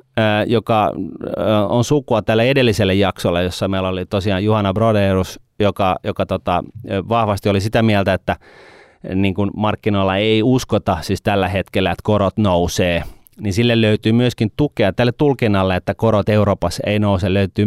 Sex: male